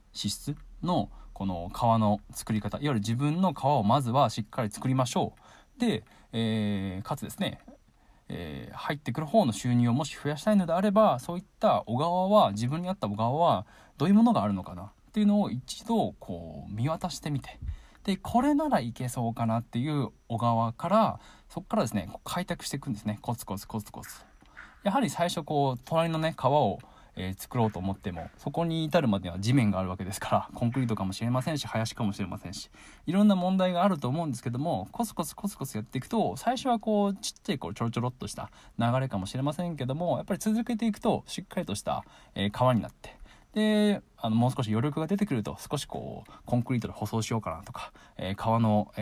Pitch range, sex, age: 110-170 Hz, male, 20-39